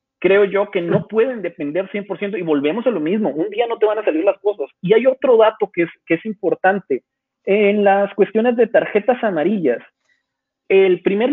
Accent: Mexican